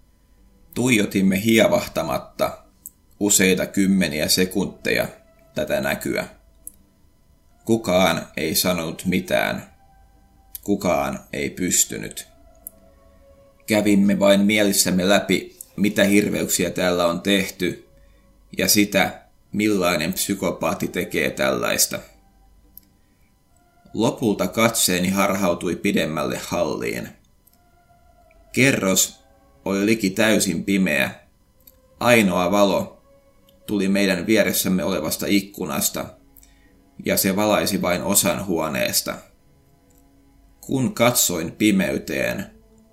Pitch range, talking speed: 85-105 Hz, 75 wpm